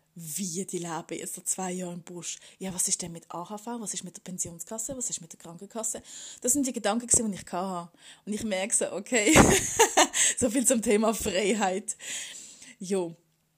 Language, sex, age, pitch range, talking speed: German, female, 20-39, 180-225 Hz, 190 wpm